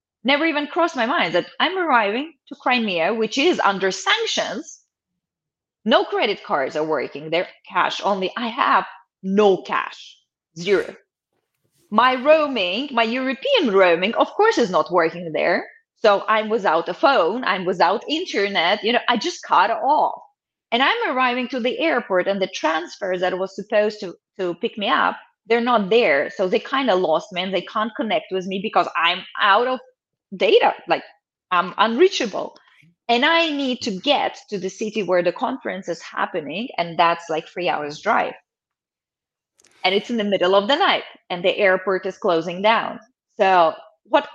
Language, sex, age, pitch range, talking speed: English, female, 20-39, 195-290 Hz, 170 wpm